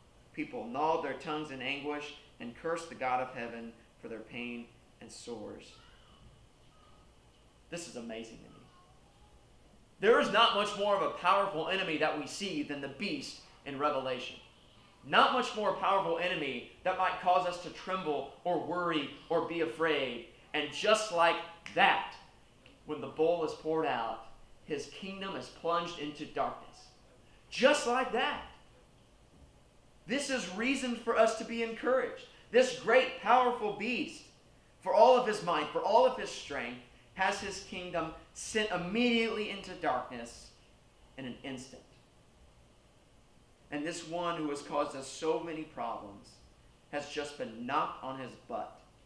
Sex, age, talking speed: male, 30-49, 150 wpm